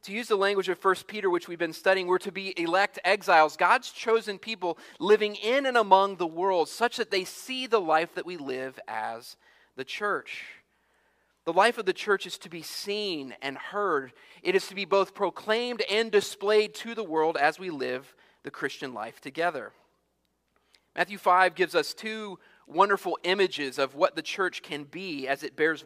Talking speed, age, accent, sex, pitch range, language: 190 wpm, 30-49, American, male, 165-215 Hz, English